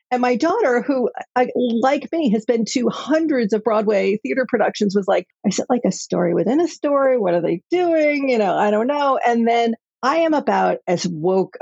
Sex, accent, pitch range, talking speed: female, American, 215-290 Hz, 205 wpm